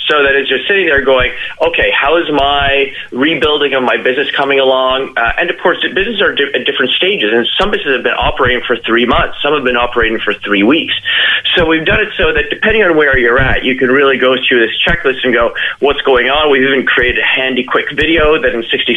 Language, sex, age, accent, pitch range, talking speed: English, male, 30-49, American, 115-140 Hz, 245 wpm